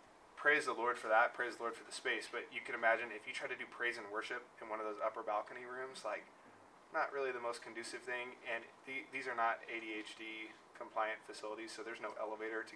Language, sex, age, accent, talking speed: English, male, 20-39, American, 225 wpm